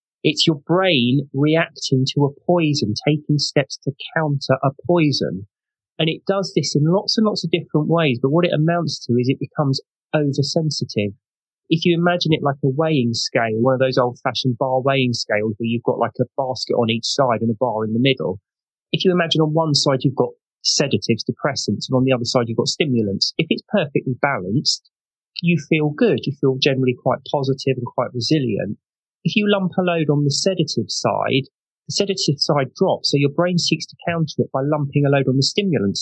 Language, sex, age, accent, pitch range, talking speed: English, male, 30-49, British, 130-165 Hz, 205 wpm